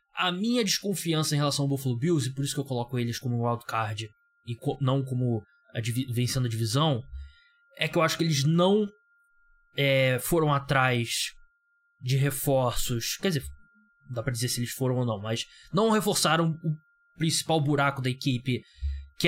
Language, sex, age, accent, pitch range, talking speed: Portuguese, male, 20-39, Brazilian, 125-165 Hz, 175 wpm